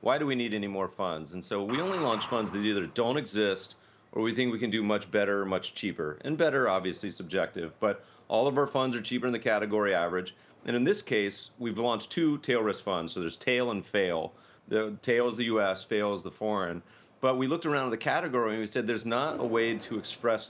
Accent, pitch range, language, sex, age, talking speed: American, 100-120 Hz, English, male, 30-49, 235 wpm